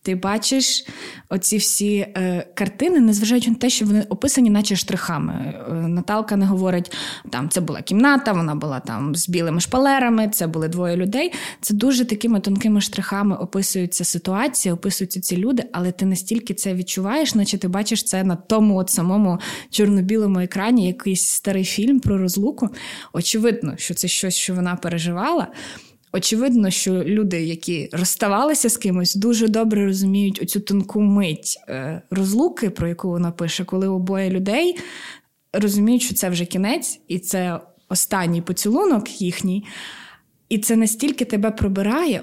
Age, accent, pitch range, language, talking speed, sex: 20-39, native, 185-220 Hz, Ukrainian, 150 wpm, female